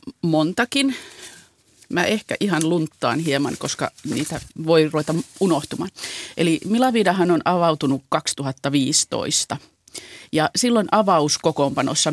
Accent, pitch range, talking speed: native, 140-175 Hz, 95 wpm